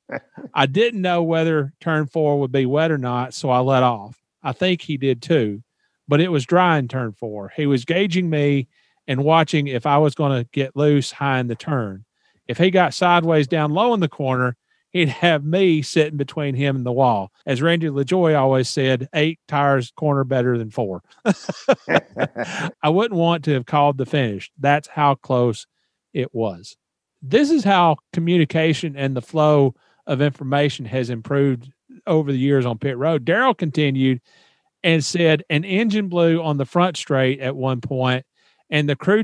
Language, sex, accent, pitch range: English, male, American, 135-170 Hz